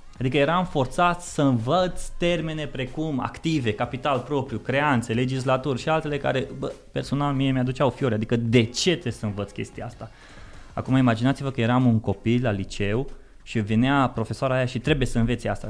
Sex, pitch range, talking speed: male, 115-155 Hz, 170 wpm